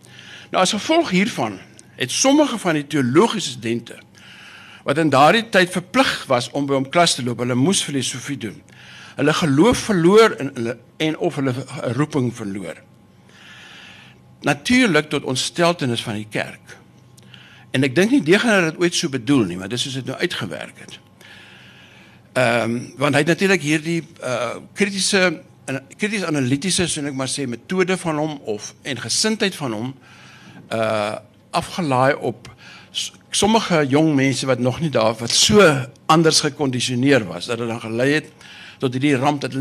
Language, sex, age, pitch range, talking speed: Dutch, male, 60-79, 120-170 Hz, 165 wpm